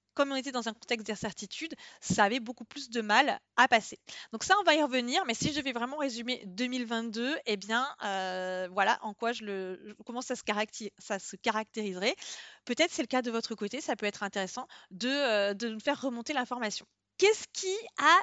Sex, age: female, 30-49